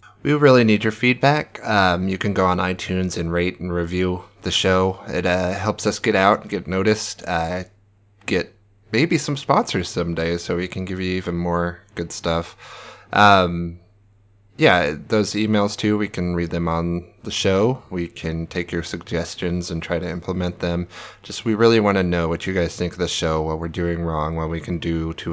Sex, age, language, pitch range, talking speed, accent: male, 20-39, English, 85-110 Hz, 200 wpm, American